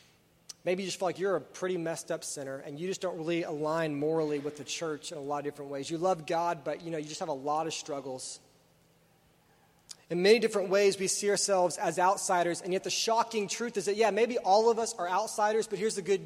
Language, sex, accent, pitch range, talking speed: English, male, American, 160-205 Hz, 245 wpm